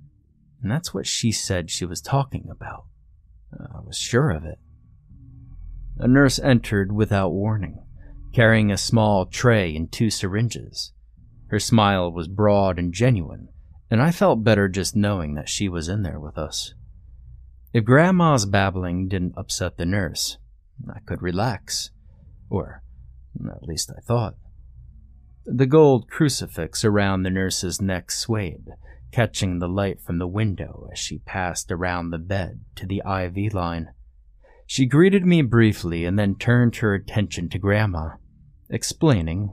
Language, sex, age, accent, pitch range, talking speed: English, male, 30-49, American, 85-110 Hz, 145 wpm